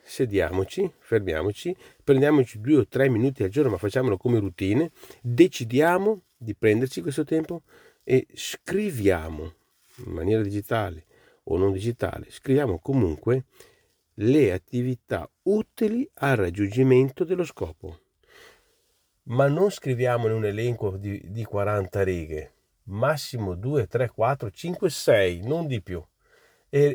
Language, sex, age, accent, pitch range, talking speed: Italian, male, 40-59, native, 100-150 Hz, 120 wpm